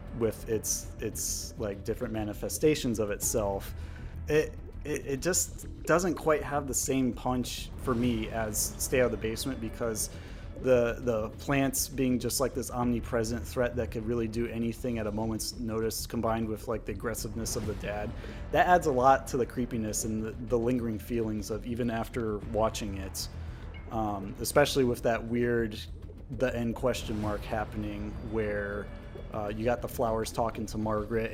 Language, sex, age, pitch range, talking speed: English, male, 30-49, 100-120 Hz, 170 wpm